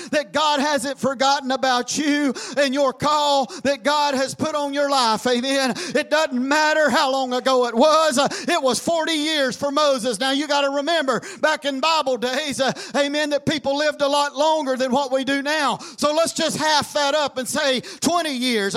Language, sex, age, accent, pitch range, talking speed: English, male, 40-59, American, 275-320 Hz, 205 wpm